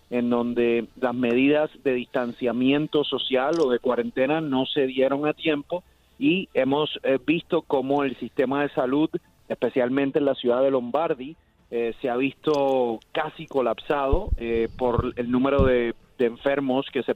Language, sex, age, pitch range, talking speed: Spanish, male, 30-49, 120-145 Hz, 155 wpm